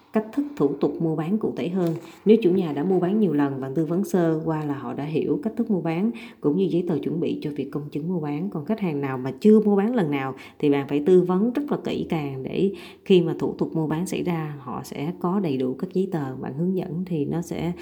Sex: female